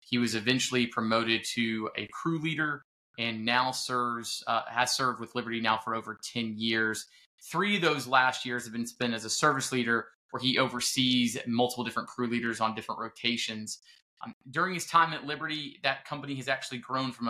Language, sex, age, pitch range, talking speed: English, male, 20-39, 115-130 Hz, 190 wpm